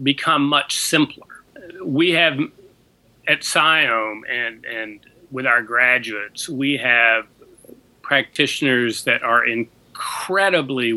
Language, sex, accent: English, male, American